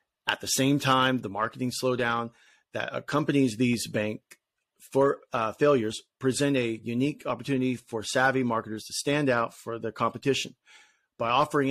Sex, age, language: male, 40-59, English